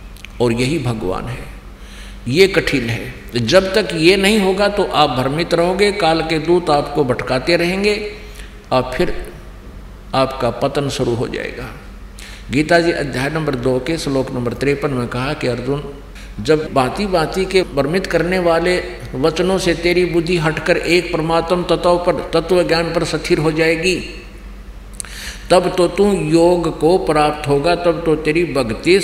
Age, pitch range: 60-79, 130-175 Hz